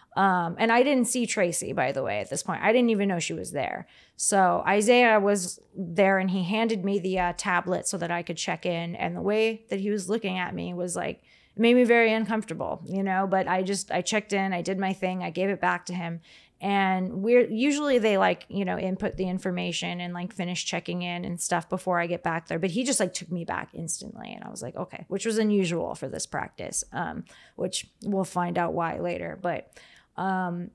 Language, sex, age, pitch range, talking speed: English, female, 20-39, 180-205 Hz, 230 wpm